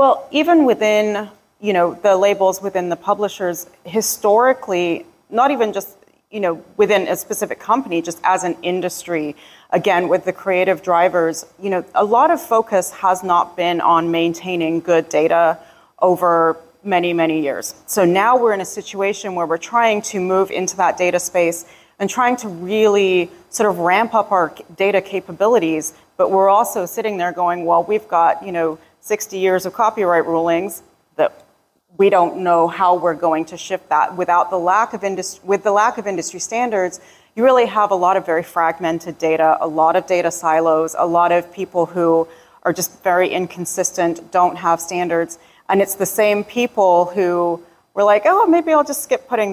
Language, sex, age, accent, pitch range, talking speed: English, female, 30-49, American, 170-205 Hz, 180 wpm